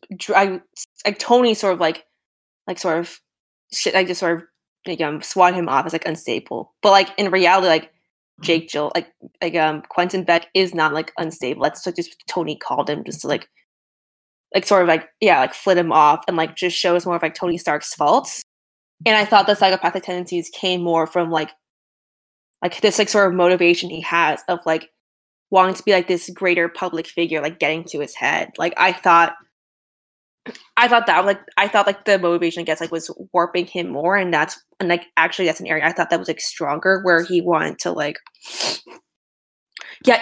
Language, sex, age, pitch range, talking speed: English, female, 20-39, 165-200 Hz, 205 wpm